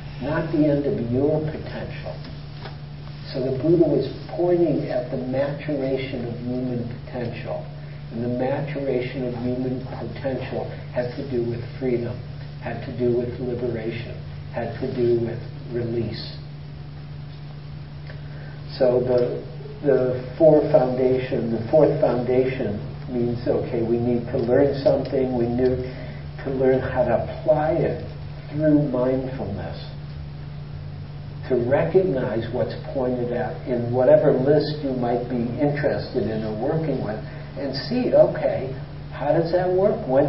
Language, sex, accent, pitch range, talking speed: English, male, American, 125-145 Hz, 130 wpm